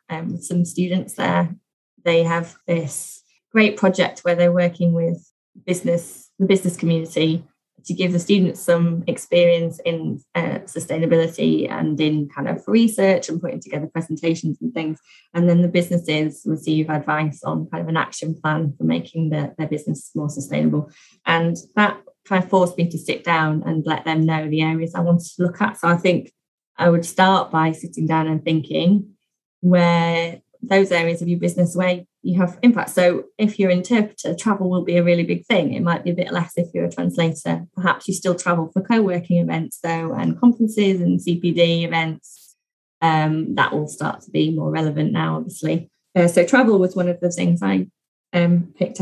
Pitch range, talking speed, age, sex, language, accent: 160-185 Hz, 185 wpm, 20-39, female, English, British